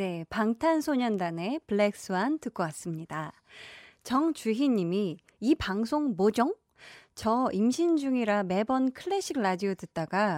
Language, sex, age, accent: Korean, female, 20-39, native